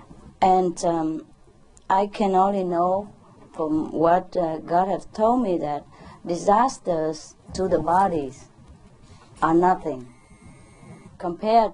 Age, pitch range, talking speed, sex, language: 40-59, 160-210 Hz, 105 wpm, female, English